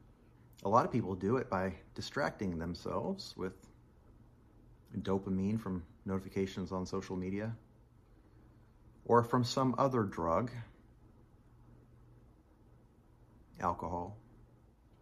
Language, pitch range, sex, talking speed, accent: English, 100-120 Hz, male, 90 wpm, American